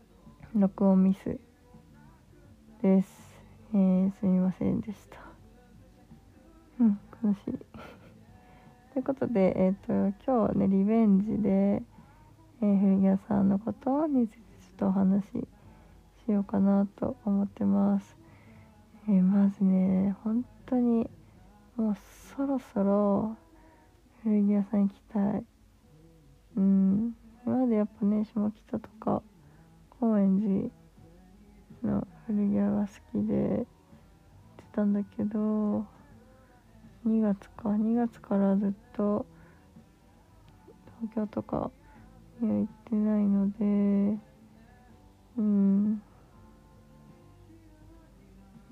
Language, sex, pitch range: Japanese, female, 185-215 Hz